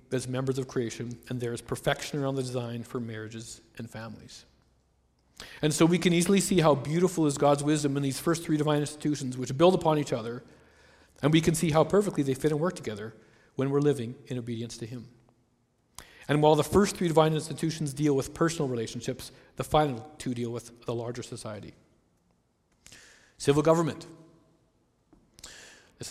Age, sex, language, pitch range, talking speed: 40-59, male, English, 120-155 Hz, 175 wpm